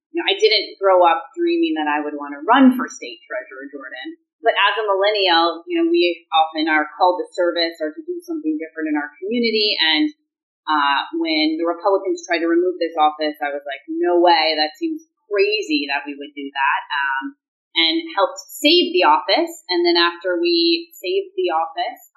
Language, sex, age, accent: English, female, 30-49, American